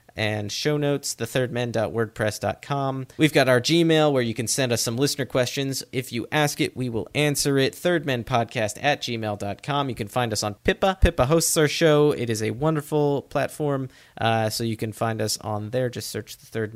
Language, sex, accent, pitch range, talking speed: English, male, American, 110-145 Hz, 195 wpm